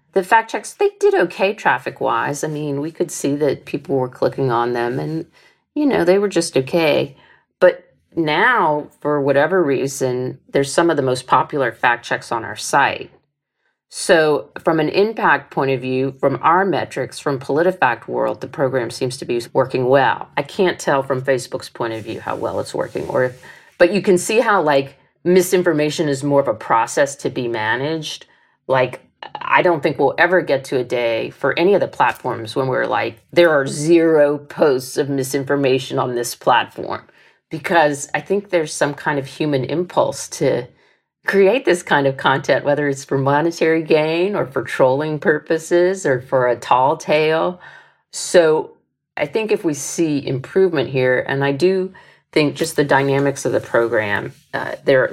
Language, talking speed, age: English, 180 wpm, 40-59